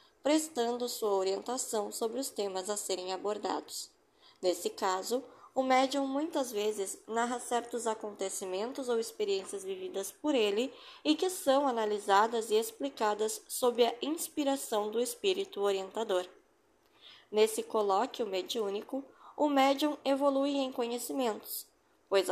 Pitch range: 215-275 Hz